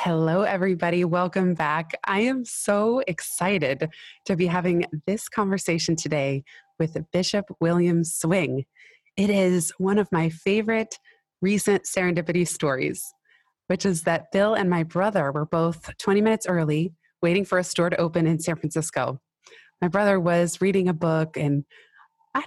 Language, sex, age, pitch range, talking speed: English, female, 20-39, 160-195 Hz, 150 wpm